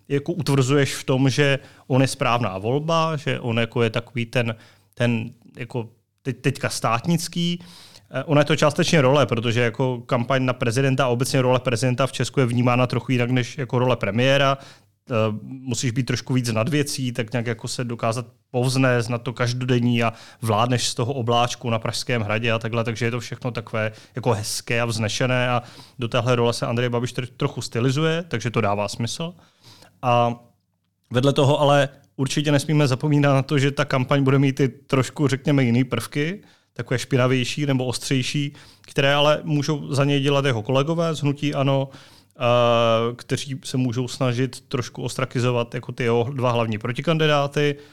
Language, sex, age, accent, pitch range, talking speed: Czech, male, 30-49, native, 115-135 Hz, 175 wpm